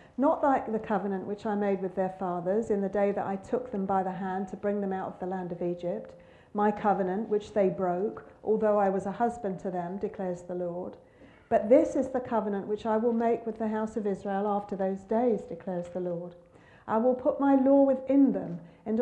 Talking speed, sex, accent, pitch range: 225 wpm, female, British, 190-250 Hz